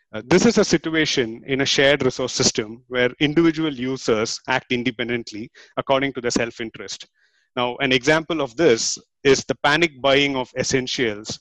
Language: English